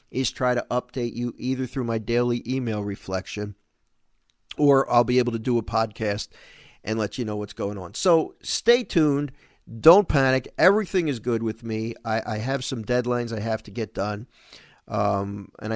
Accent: American